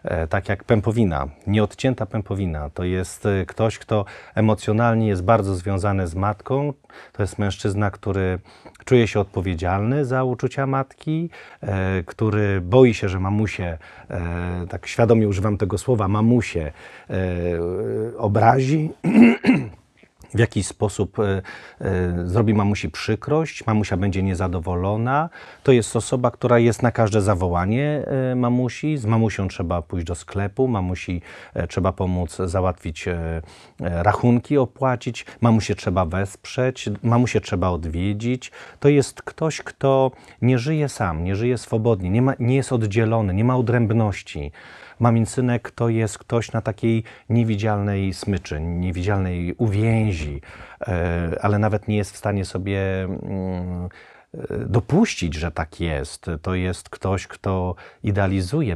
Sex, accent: male, native